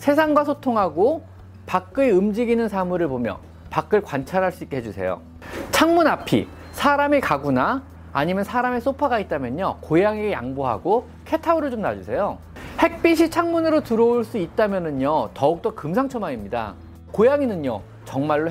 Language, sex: Korean, male